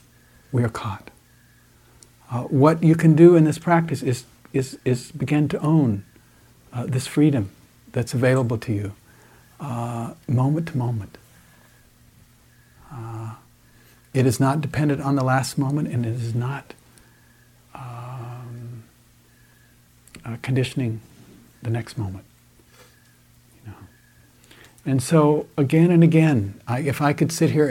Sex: male